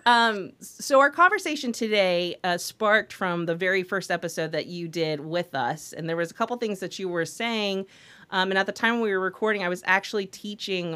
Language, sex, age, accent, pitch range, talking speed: English, female, 30-49, American, 160-195 Hz, 215 wpm